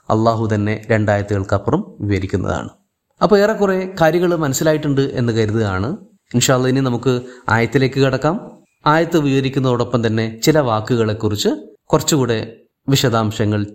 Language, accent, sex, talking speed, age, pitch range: Malayalam, native, male, 100 wpm, 30-49, 125-200 Hz